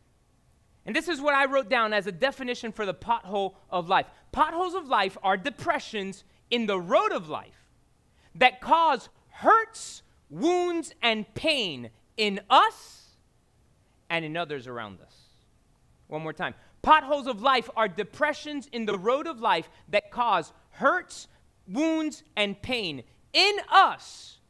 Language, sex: English, male